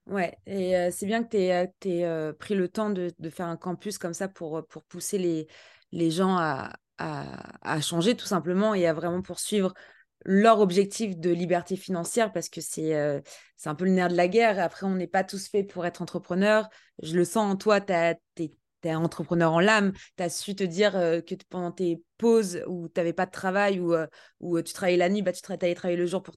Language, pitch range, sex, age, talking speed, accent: French, 170-205 Hz, female, 20-39, 240 wpm, French